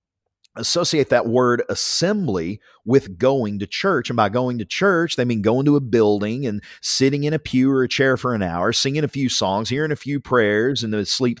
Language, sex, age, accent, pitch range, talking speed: English, male, 40-59, American, 115-155 Hz, 215 wpm